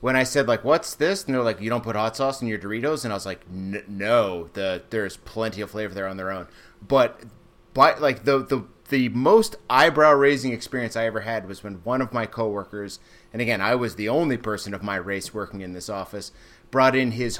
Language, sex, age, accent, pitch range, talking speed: English, male, 30-49, American, 100-130 Hz, 235 wpm